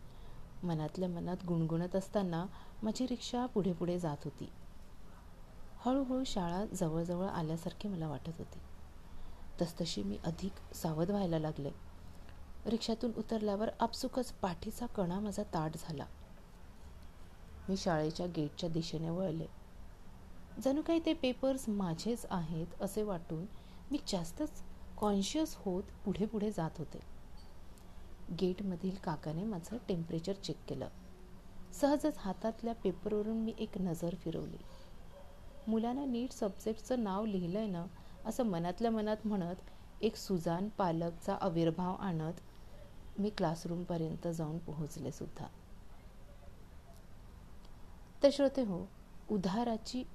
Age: 40-59